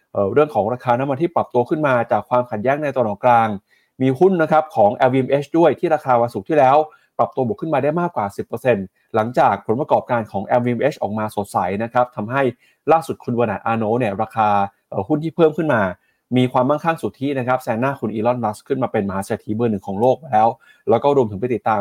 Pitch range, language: 110-145 Hz, Thai